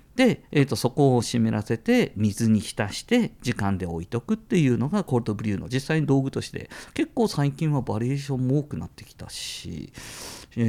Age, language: 50-69, Japanese